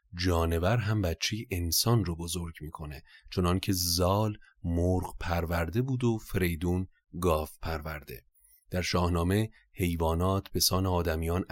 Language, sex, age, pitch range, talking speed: Persian, male, 30-49, 85-105 Hz, 115 wpm